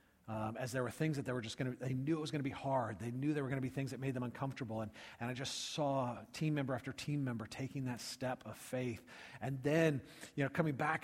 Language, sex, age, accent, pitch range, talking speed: English, male, 40-59, American, 120-150 Hz, 285 wpm